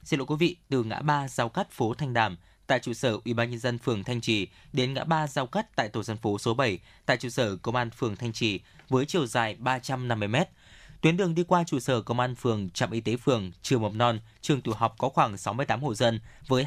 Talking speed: 255 wpm